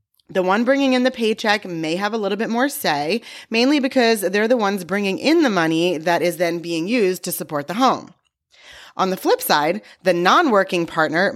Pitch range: 170-230 Hz